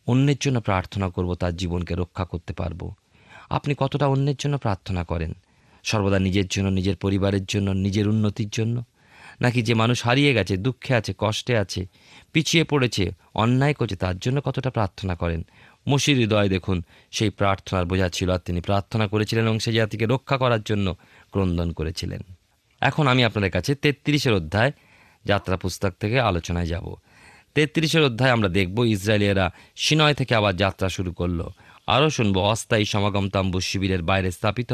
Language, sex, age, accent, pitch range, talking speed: Bengali, male, 30-49, native, 95-120 Hz, 155 wpm